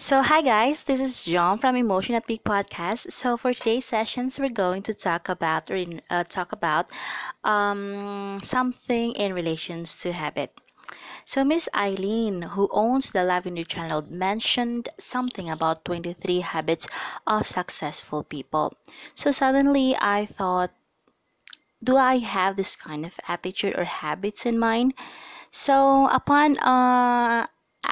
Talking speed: 140 wpm